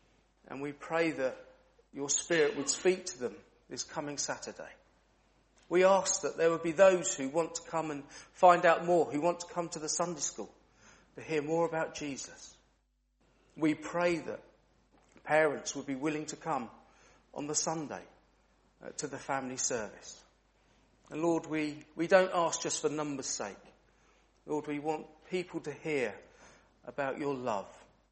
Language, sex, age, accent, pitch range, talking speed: English, male, 40-59, British, 145-170 Hz, 160 wpm